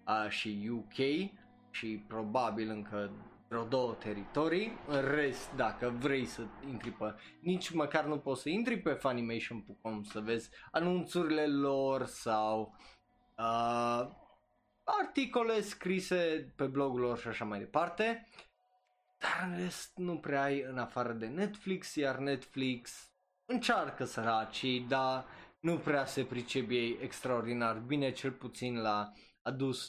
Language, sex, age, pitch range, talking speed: Romanian, male, 20-39, 115-165 Hz, 125 wpm